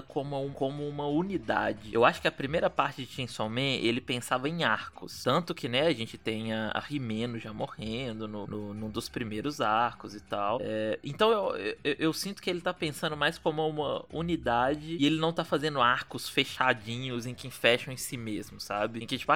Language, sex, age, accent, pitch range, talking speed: Portuguese, male, 20-39, Brazilian, 125-180 Hz, 200 wpm